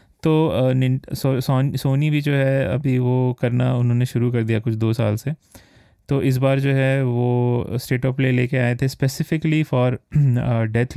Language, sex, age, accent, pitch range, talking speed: Hindi, male, 20-39, native, 110-130 Hz, 180 wpm